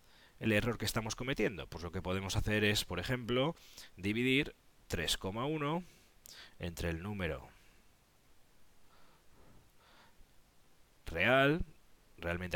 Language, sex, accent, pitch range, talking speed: Spanish, male, Spanish, 85-120 Hz, 95 wpm